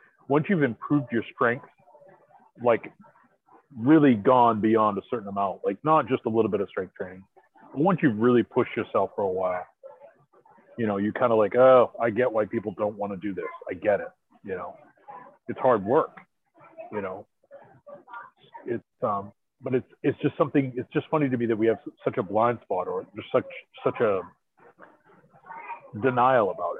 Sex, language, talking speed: male, English, 185 wpm